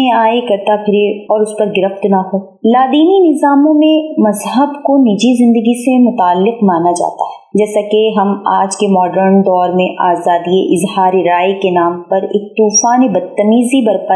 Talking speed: 165 wpm